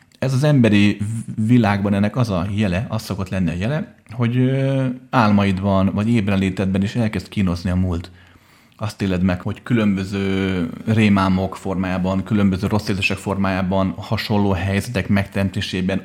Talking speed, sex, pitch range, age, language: 135 wpm, male, 95-110 Hz, 30-49, Hungarian